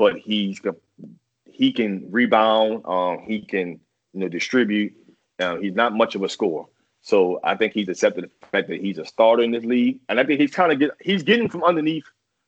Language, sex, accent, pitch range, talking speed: English, male, American, 95-120 Hz, 210 wpm